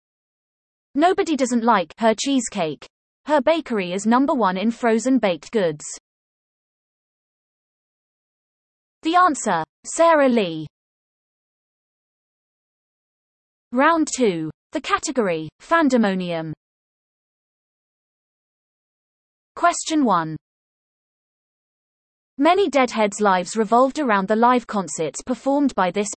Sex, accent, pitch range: female, British, 200-280 Hz